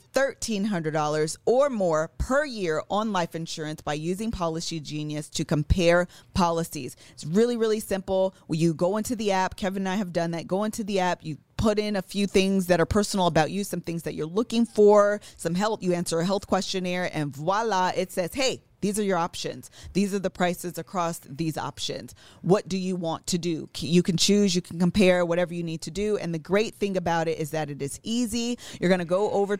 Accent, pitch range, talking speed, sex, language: American, 165-205 Hz, 215 wpm, female, English